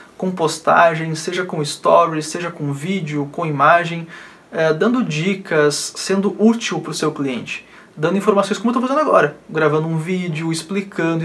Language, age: Portuguese, 20-39